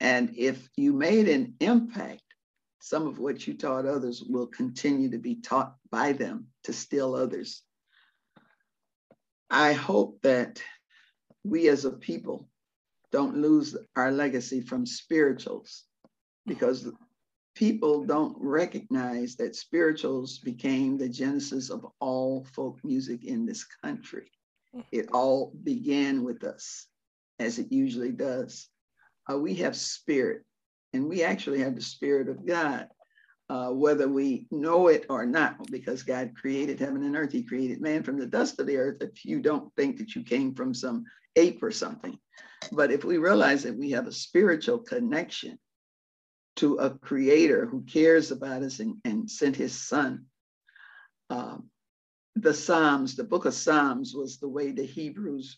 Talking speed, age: 150 wpm, 50-69